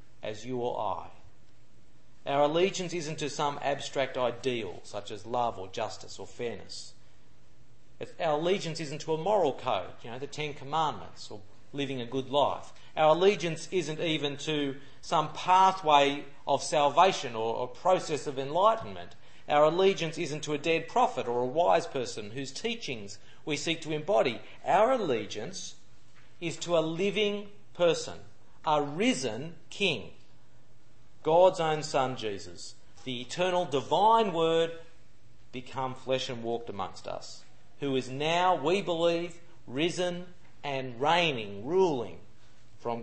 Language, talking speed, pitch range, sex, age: English, 140 wpm, 125-165 Hz, male, 40-59